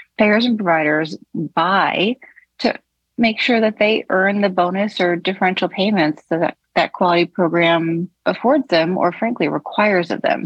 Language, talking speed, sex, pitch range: English, 150 wpm, female, 155-195 Hz